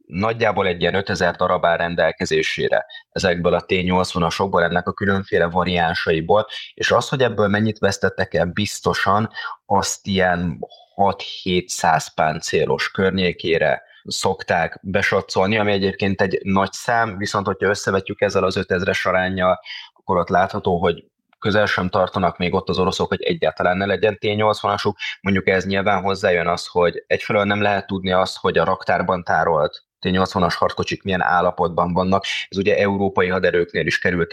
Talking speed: 150 wpm